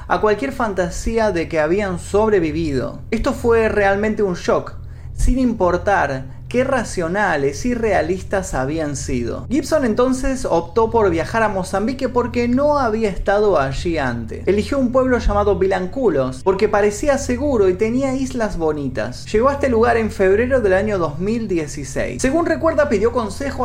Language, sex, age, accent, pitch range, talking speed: Spanish, male, 30-49, Argentinian, 170-245 Hz, 145 wpm